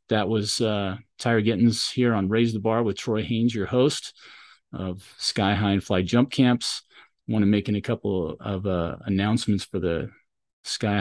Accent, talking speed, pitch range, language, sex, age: American, 185 wpm, 95-110 Hz, English, male, 30-49